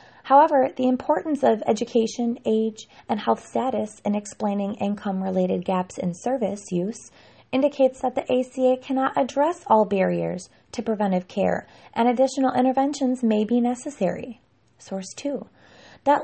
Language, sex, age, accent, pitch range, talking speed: English, female, 20-39, American, 210-260 Hz, 135 wpm